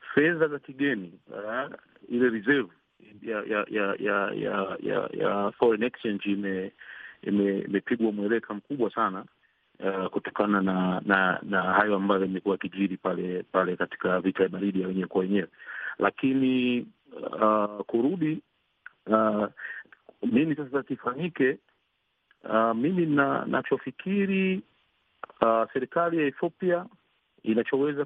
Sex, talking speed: male, 115 wpm